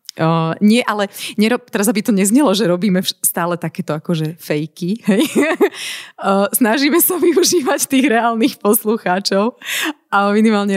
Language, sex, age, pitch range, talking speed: Slovak, female, 30-49, 175-240 Hz, 135 wpm